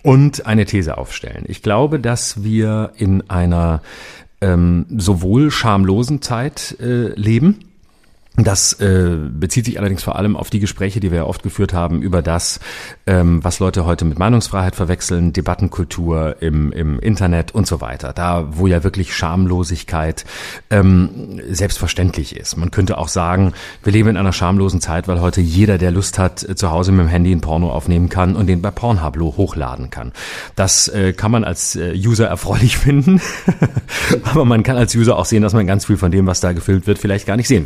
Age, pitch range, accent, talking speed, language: 40-59, 90-120 Hz, German, 185 wpm, German